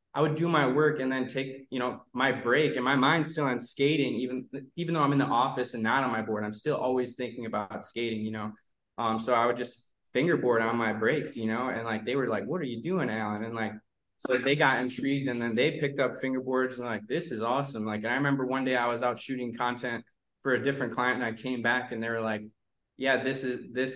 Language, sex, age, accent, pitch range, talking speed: English, male, 20-39, American, 115-130 Hz, 250 wpm